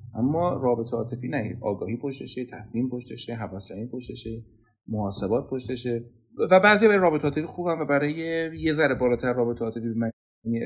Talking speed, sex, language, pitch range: 150 wpm, male, Persian, 115-145 Hz